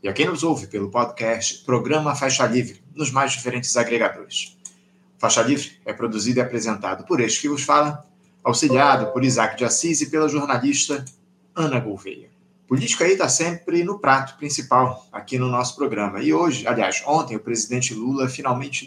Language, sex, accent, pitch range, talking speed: Portuguese, male, Brazilian, 120-150 Hz, 170 wpm